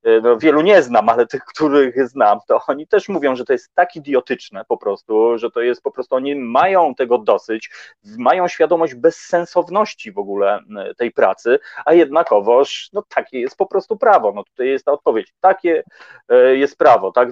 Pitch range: 125-185 Hz